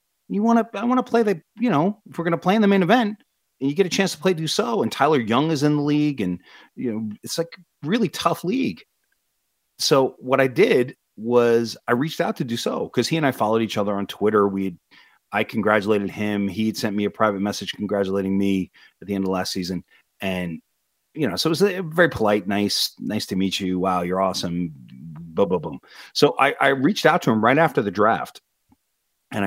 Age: 30-49